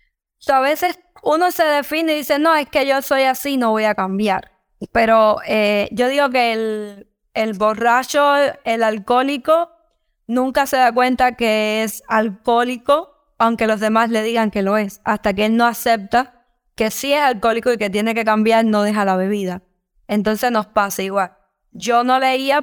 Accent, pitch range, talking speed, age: American, 215-255 Hz, 180 wpm, 10-29